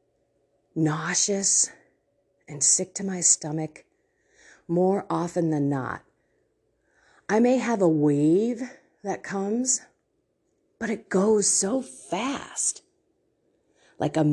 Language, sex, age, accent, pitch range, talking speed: English, female, 40-59, American, 175-285 Hz, 100 wpm